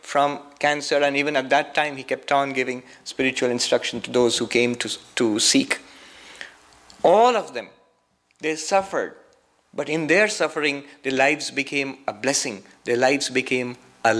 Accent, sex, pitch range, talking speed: Indian, male, 120-155 Hz, 160 wpm